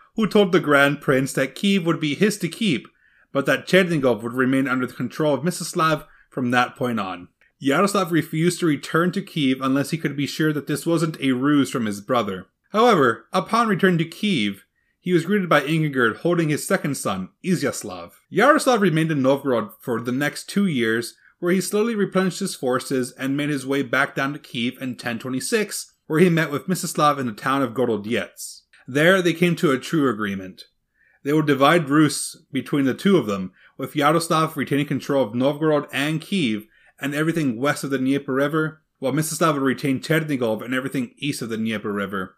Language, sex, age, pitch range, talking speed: English, male, 30-49, 130-175 Hz, 195 wpm